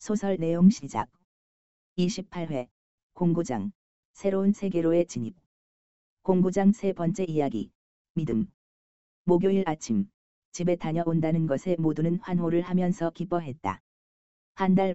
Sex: female